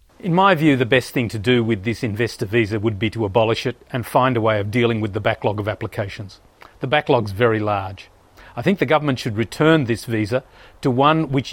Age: 50-69